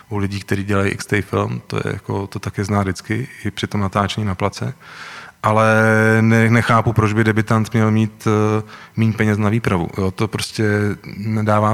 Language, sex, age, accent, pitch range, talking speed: Czech, male, 30-49, native, 105-110 Hz, 185 wpm